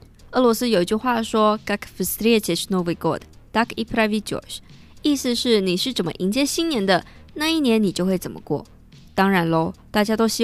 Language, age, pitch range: Chinese, 20-39, 185-245 Hz